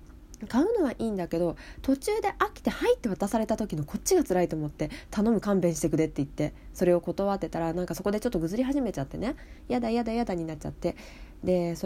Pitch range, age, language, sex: 160-240 Hz, 20-39, Japanese, female